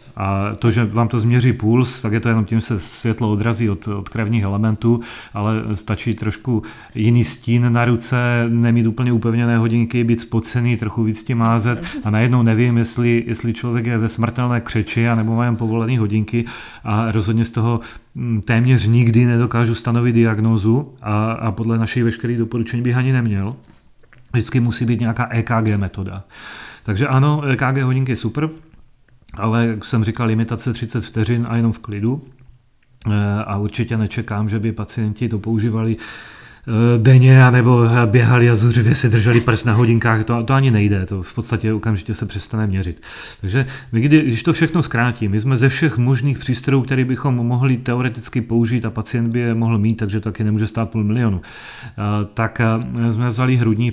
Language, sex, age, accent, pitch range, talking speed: Czech, male, 30-49, native, 110-125 Hz, 175 wpm